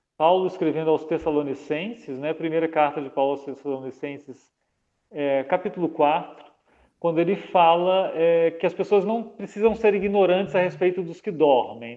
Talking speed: 150 wpm